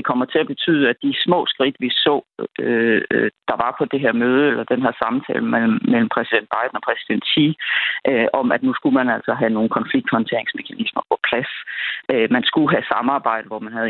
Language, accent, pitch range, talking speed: Danish, native, 115-160 Hz, 205 wpm